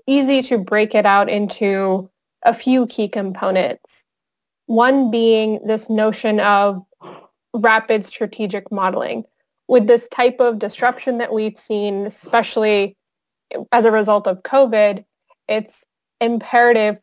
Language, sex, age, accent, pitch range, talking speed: English, female, 20-39, American, 200-230 Hz, 120 wpm